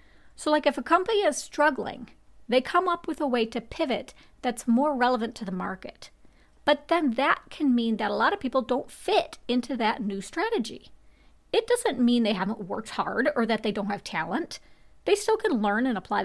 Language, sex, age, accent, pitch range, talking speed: English, female, 40-59, American, 225-290 Hz, 205 wpm